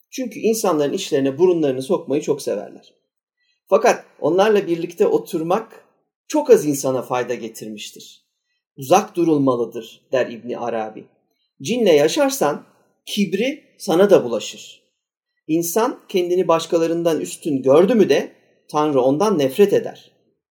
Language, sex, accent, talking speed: Turkish, male, native, 110 wpm